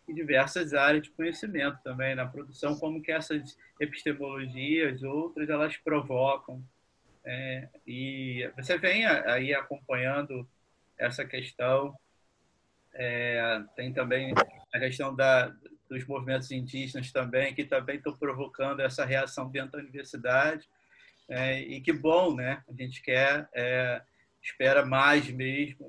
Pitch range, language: 130-150 Hz, Portuguese